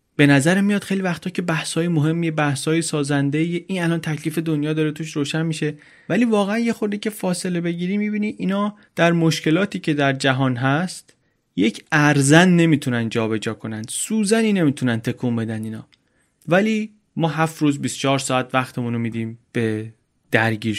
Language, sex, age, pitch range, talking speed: Persian, male, 30-49, 125-165 Hz, 155 wpm